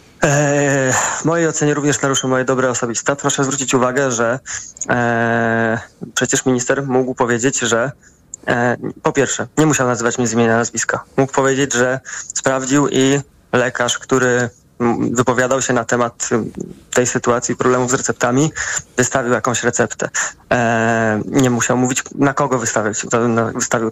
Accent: native